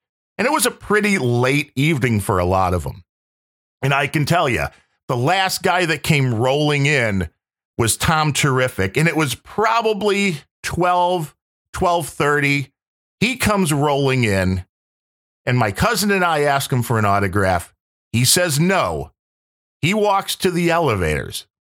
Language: English